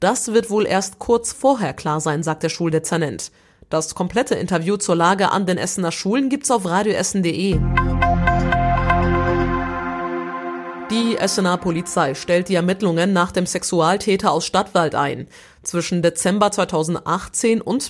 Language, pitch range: German, 160-210 Hz